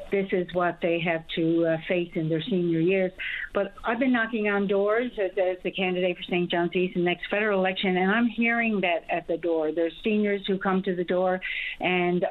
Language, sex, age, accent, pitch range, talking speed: English, female, 50-69, American, 175-195 Hz, 225 wpm